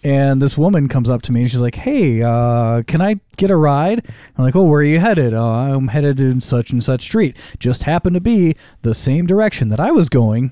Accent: American